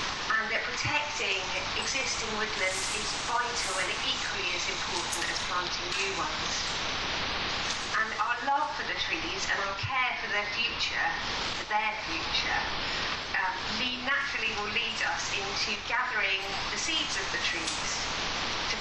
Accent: British